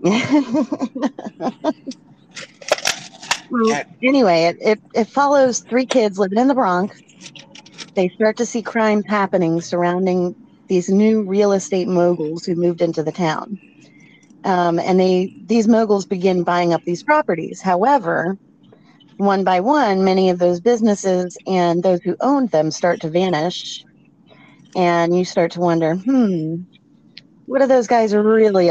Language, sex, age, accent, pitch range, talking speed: English, female, 30-49, American, 175-220 Hz, 135 wpm